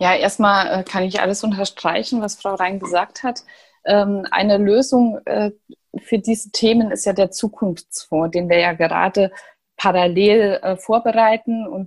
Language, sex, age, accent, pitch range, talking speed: German, female, 20-39, German, 180-220 Hz, 135 wpm